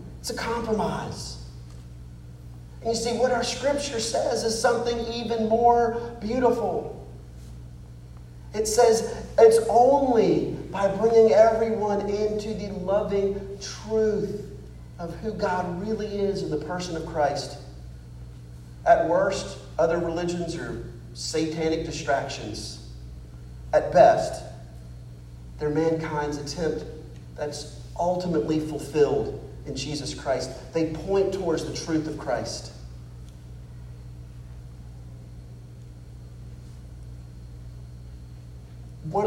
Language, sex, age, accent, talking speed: English, male, 40-59, American, 95 wpm